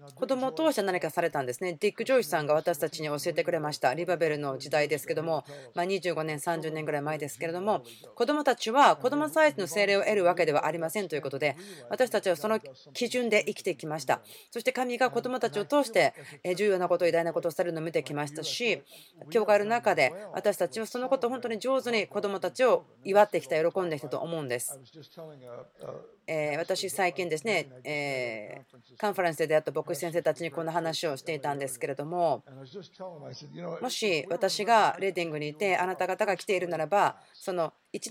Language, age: Japanese, 30-49